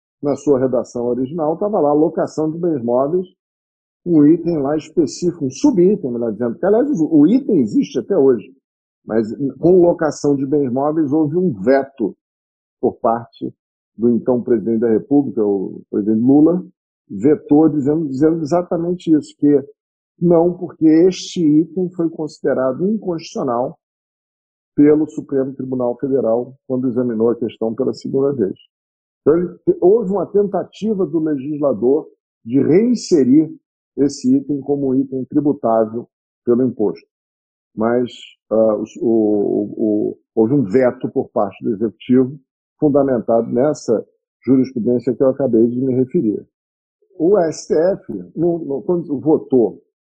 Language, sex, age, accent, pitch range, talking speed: Portuguese, male, 50-69, Brazilian, 120-175 Hz, 130 wpm